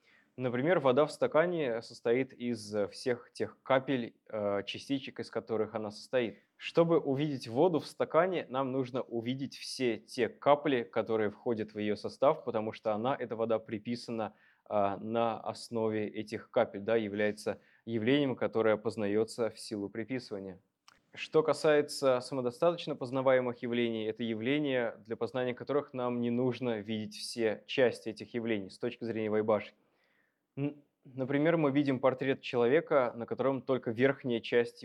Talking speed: 140 wpm